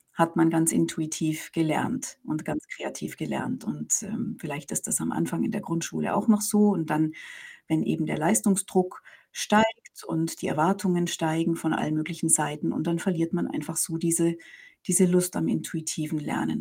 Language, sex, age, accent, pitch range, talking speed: German, female, 50-69, German, 165-225 Hz, 175 wpm